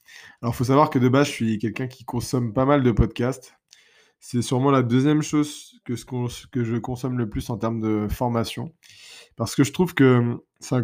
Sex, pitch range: male, 100-120 Hz